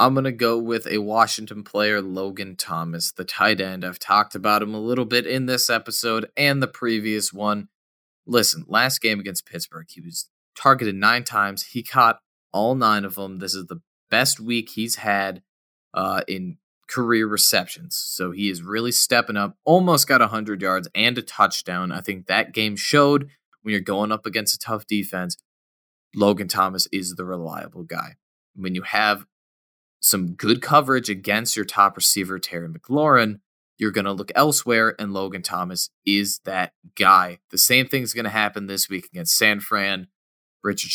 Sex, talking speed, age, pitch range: male, 175 wpm, 20-39, 95-120 Hz